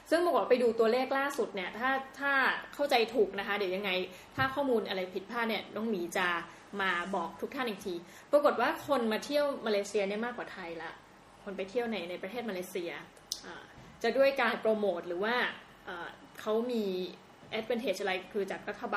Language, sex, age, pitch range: Thai, female, 20-39, 195-250 Hz